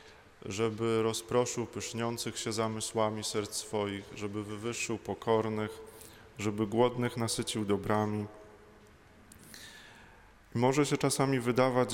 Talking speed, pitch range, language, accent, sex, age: 90 wpm, 105-115 Hz, Polish, native, male, 20-39